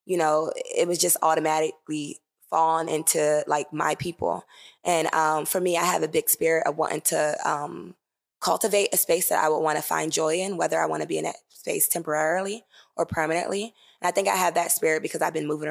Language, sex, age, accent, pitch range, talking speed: English, female, 20-39, American, 155-180 Hz, 220 wpm